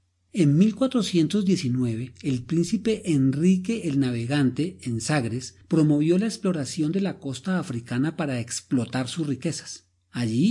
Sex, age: male, 40-59